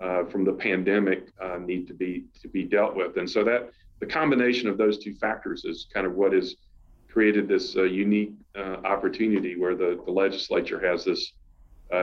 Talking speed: 195 wpm